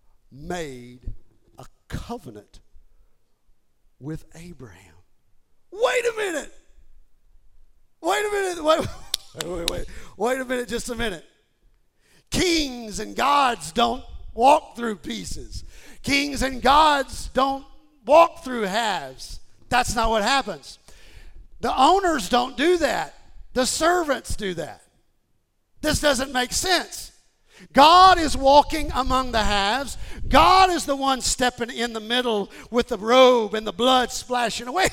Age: 50-69